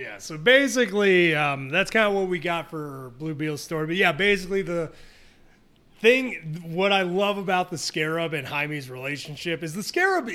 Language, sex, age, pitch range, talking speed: English, male, 30-49, 150-190 Hz, 175 wpm